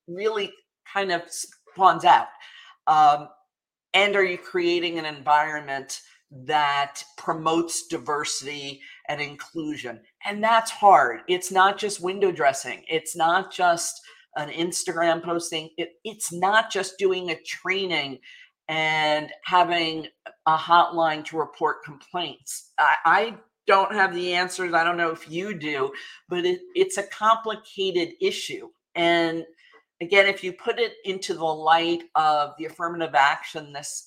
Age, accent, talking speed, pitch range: 50-69, American, 130 wpm, 155-200 Hz